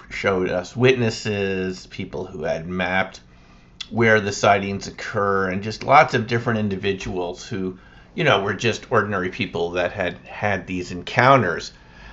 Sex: male